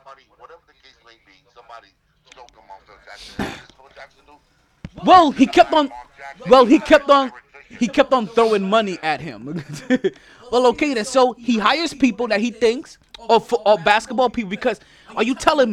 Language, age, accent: English, 20-39, American